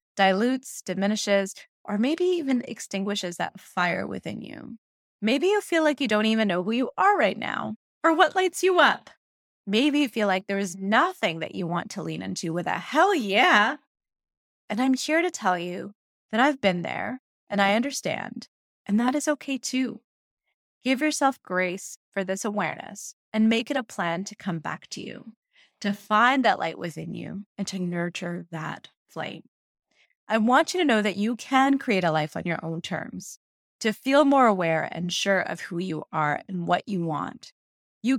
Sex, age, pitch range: female, 20-39, 180-260 Hz